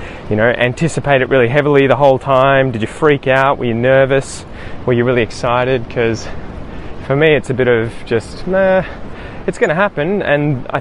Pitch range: 105-135 Hz